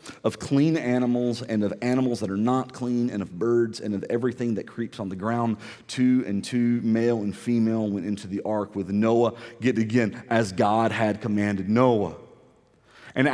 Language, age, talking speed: English, 40-59, 180 wpm